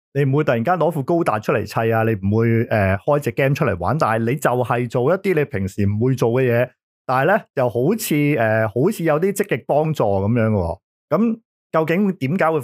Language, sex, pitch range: Chinese, male, 105-145 Hz